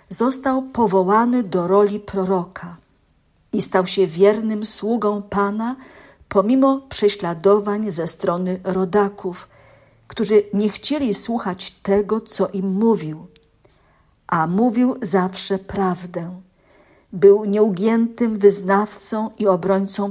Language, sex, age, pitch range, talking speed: Polish, female, 50-69, 185-215 Hz, 100 wpm